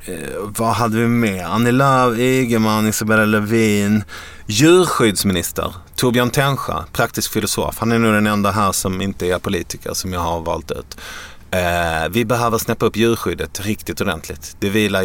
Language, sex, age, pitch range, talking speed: English, male, 30-49, 85-110 Hz, 155 wpm